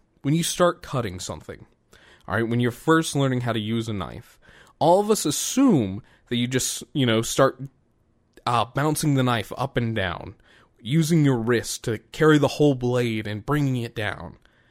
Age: 20-39